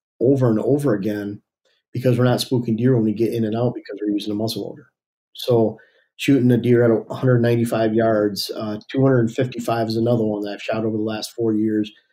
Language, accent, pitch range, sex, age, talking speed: English, American, 110-125 Hz, male, 40-59, 205 wpm